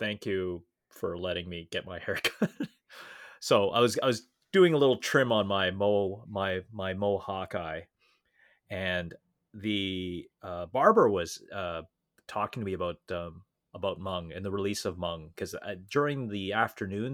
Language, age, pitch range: English, 30-49, 90-120 Hz